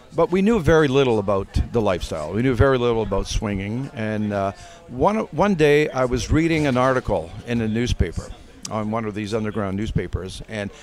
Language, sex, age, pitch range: English, male, 50-69, 105-140 Hz